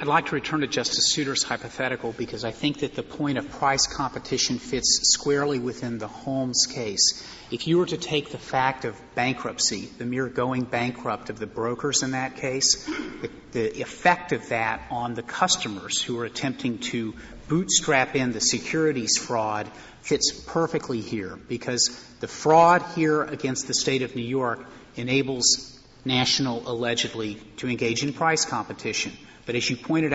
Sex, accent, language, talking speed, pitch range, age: male, American, English, 170 wpm, 120-145 Hz, 40-59